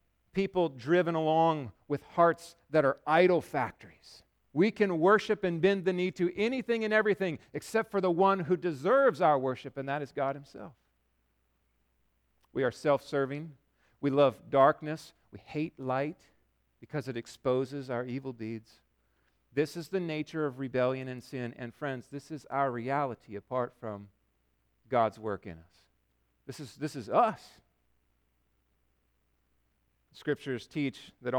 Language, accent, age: English, American, 40-59